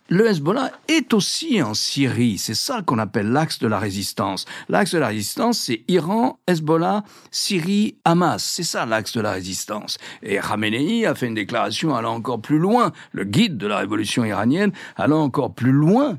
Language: French